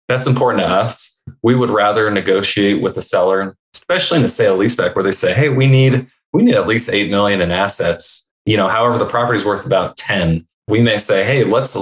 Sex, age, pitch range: male, 20-39, 95-110 Hz